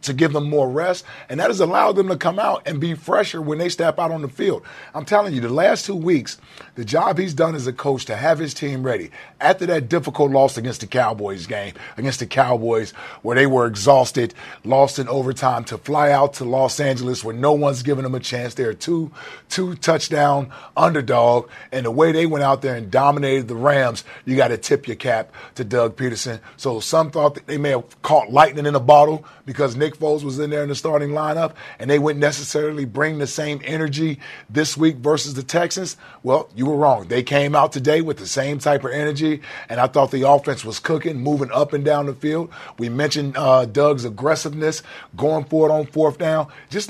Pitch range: 130-160 Hz